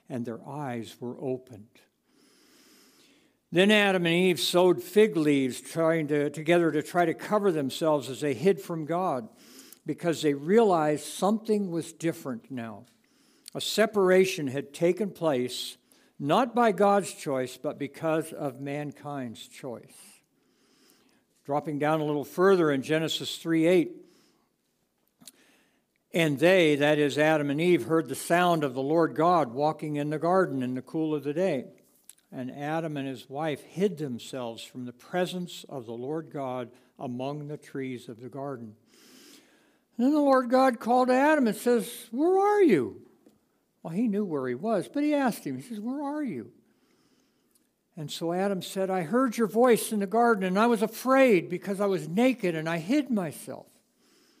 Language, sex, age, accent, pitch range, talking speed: English, male, 60-79, American, 145-210 Hz, 160 wpm